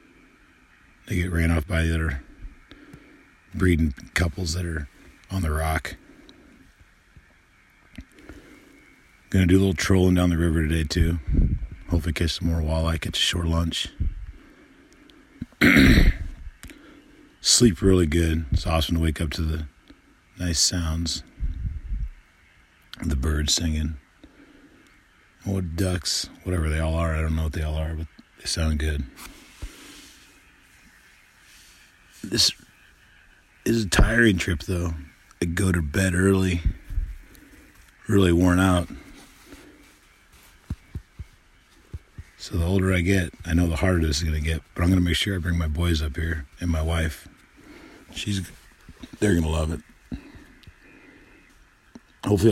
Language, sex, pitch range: English, male, 80-90 Hz